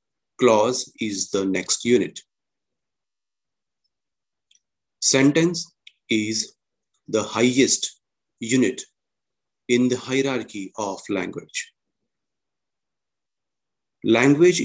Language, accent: English, Indian